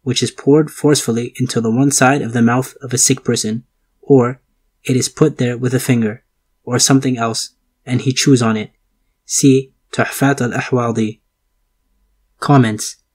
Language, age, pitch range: English, 20-39, 110-135 Hz